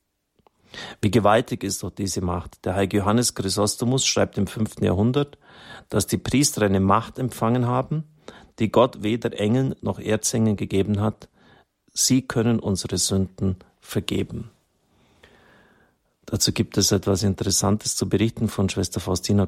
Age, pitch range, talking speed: 40-59, 95-110 Hz, 135 wpm